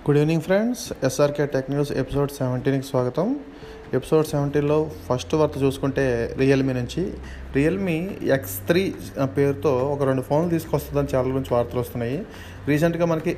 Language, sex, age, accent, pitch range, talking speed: Telugu, male, 30-49, native, 135-170 Hz, 135 wpm